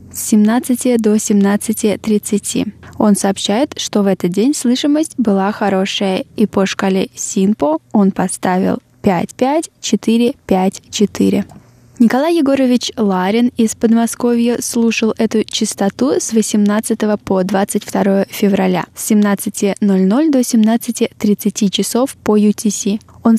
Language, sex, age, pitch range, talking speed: Russian, female, 10-29, 200-235 Hz, 115 wpm